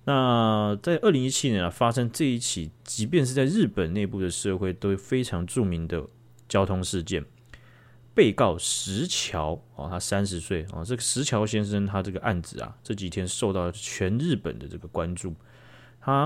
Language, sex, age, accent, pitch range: Chinese, male, 30-49, native, 95-130 Hz